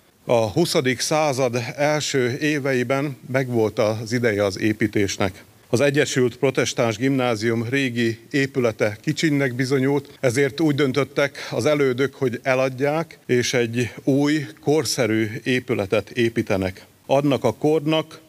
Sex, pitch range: male, 115-145 Hz